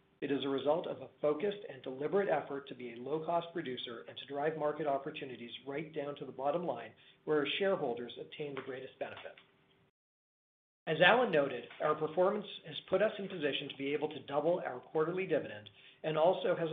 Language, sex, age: English, male, 40-59